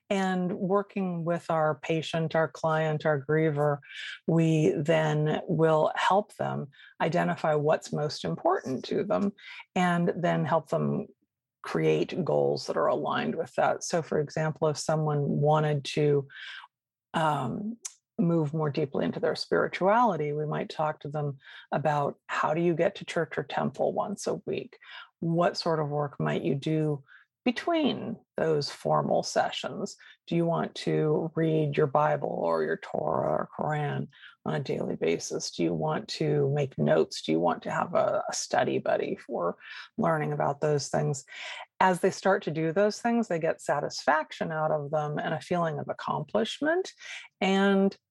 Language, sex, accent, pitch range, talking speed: English, female, American, 150-190 Hz, 160 wpm